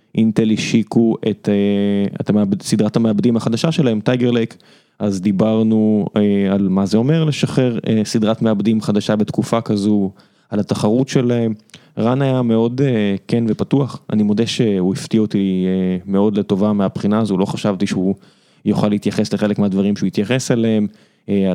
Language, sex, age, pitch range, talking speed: Hebrew, male, 20-39, 100-120 Hz, 155 wpm